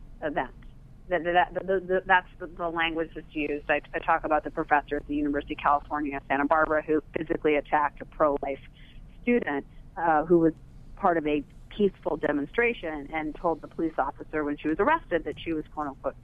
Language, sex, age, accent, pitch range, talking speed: English, female, 40-59, American, 145-175 Hz, 165 wpm